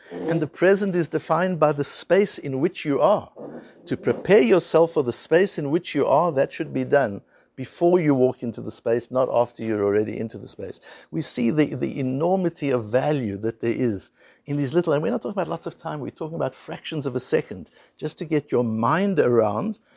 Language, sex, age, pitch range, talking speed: English, male, 60-79, 115-160 Hz, 220 wpm